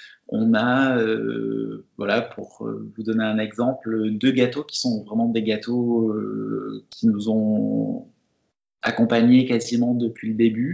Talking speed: 140 wpm